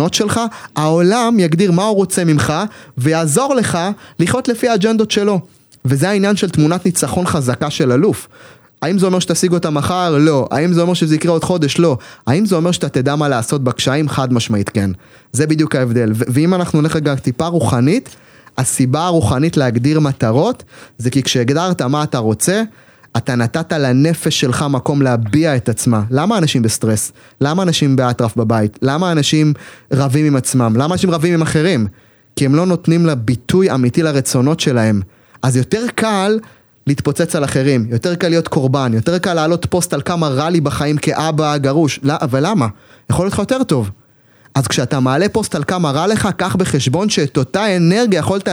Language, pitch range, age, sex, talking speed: Hebrew, 130-180 Hz, 30-49, male, 175 wpm